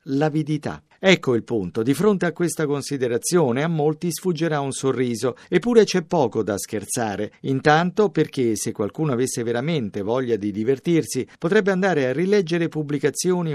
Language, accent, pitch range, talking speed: Italian, native, 125-170 Hz, 145 wpm